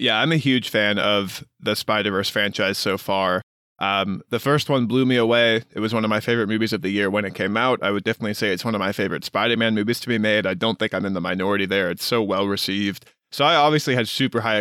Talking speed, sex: 265 wpm, male